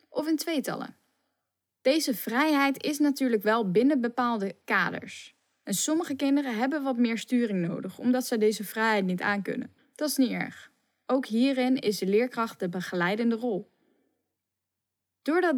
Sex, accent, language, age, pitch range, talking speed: female, Dutch, Dutch, 10-29, 200-265 Hz, 145 wpm